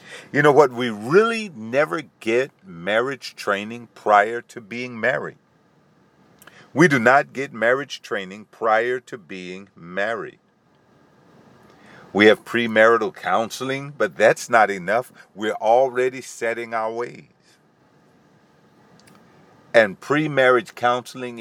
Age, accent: 50-69, American